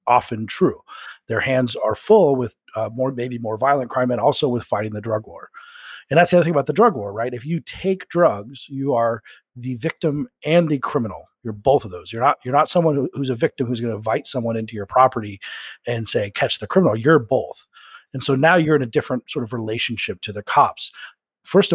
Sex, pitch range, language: male, 115-145 Hz, English